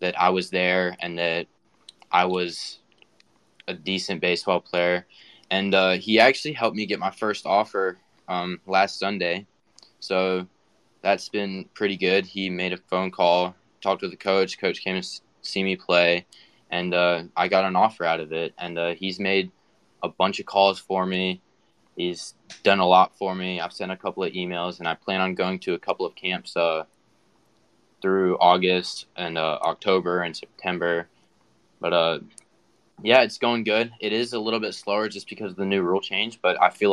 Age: 20-39